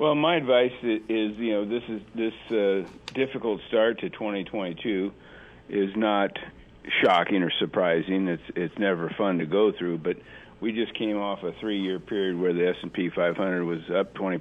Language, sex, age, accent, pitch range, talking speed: English, male, 50-69, American, 90-105 Hz, 180 wpm